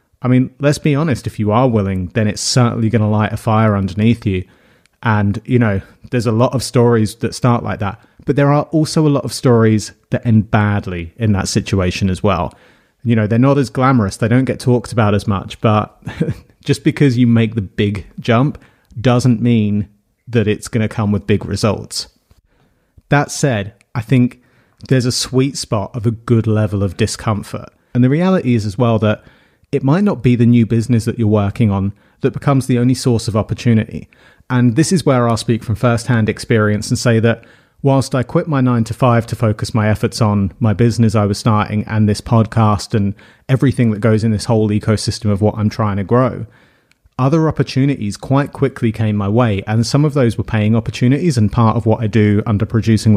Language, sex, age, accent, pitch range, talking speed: English, male, 30-49, British, 105-125 Hz, 210 wpm